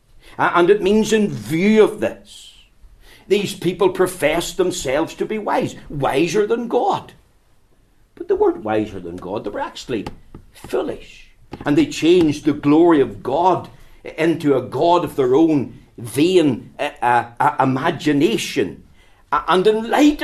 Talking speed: 145 wpm